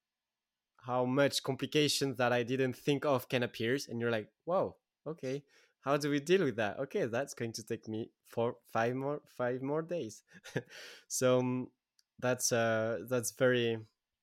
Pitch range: 110-130 Hz